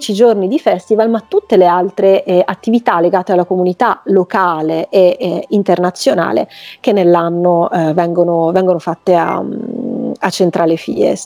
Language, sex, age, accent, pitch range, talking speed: Italian, female, 30-49, native, 175-230 Hz, 140 wpm